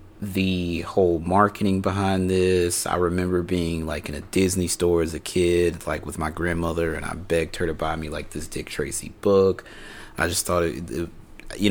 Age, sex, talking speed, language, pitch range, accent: 30-49, male, 185 wpm, English, 80-95 Hz, American